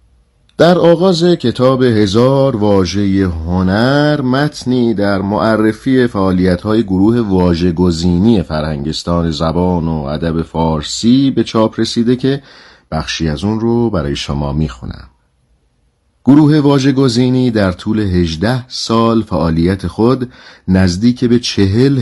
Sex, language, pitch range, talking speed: male, Persian, 85-115 Hz, 105 wpm